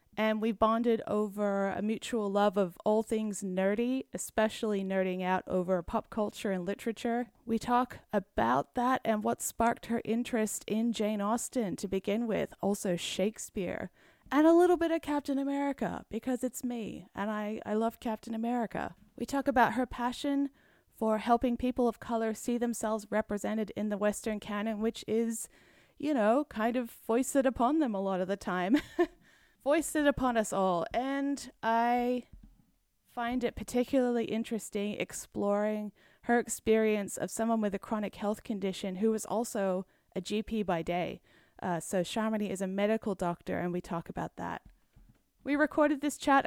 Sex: female